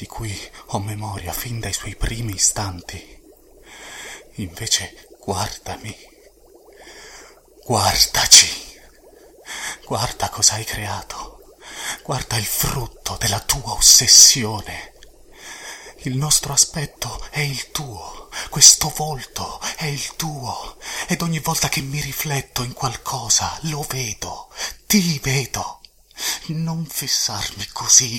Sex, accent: male, native